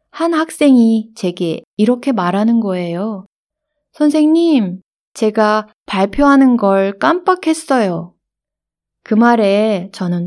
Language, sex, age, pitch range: Korean, female, 20-39, 190-245 Hz